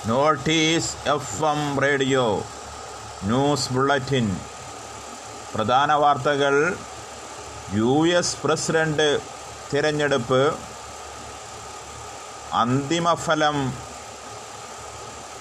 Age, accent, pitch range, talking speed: 30-49, native, 145-175 Hz, 55 wpm